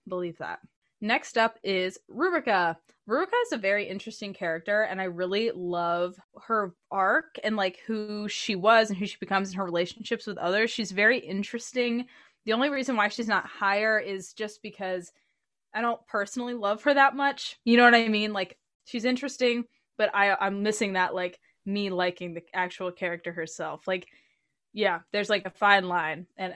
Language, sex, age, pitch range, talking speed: English, female, 20-39, 190-240 Hz, 180 wpm